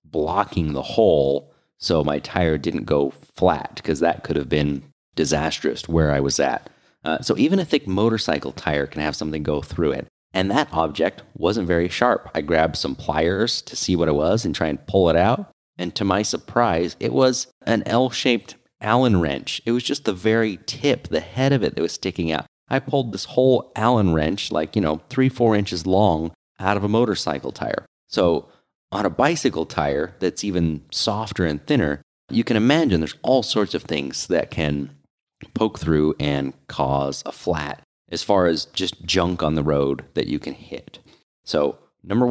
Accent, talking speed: American, 190 wpm